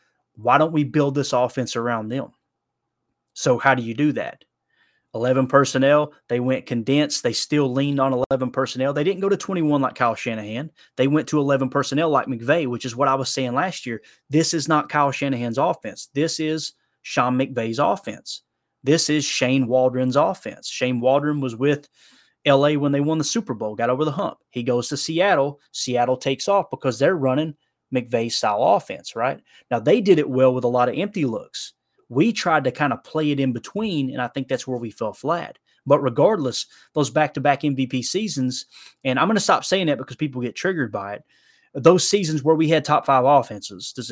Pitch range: 125-150 Hz